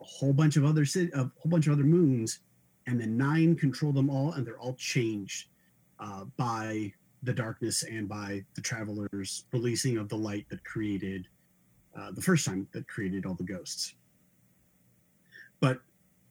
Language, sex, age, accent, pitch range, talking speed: English, male, 30-49, American, 110-145 Hz, 170 wpm